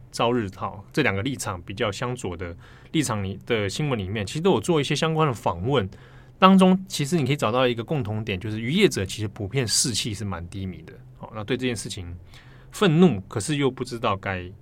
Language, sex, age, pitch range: Chinese, male, 20-39, 105-135 Hz